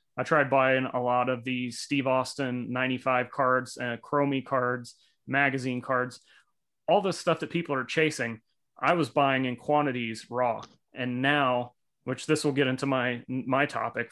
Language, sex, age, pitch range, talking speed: English, male, 30-49, 125-145 Hz, 165 wpm